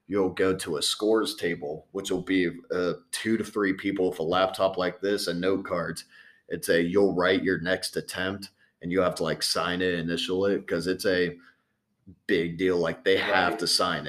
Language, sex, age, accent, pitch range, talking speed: English, male, 30-49, American, 85-100 Hz, 205 wpm